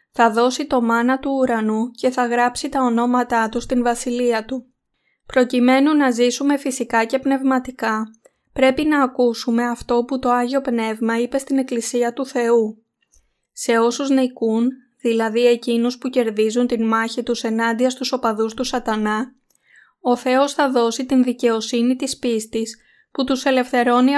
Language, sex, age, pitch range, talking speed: Greek, female, 20-39, 230-260 Hz, 150 wpm